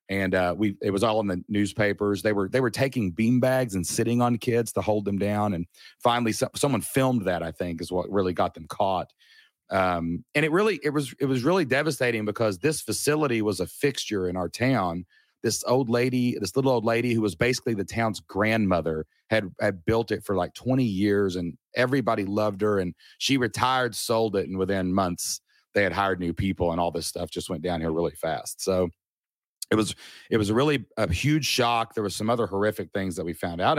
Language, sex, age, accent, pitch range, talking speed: English, male, 30-49, American, 95-130 Hz, 215 wpm